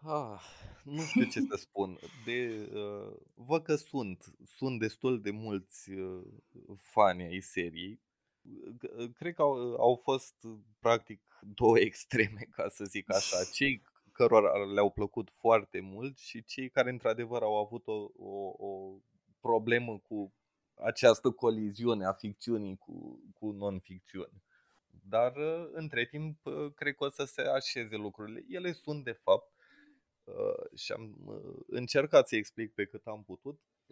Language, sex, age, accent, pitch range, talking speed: Romanian, male, 20-39, native, 100-140 Hz, 135 wpm